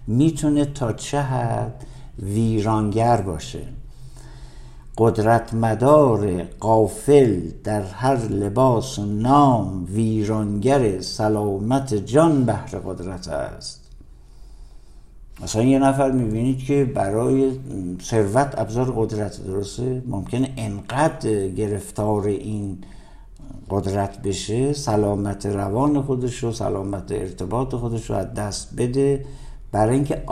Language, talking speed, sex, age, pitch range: Persian, 95 wpm, male, 60-79, 100-130 Hz